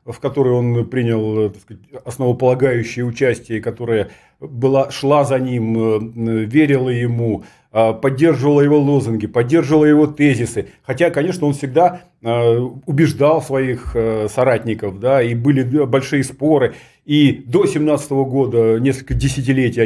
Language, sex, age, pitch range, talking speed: Russian, male, 40-59, 120-155 Hz, 115 wpm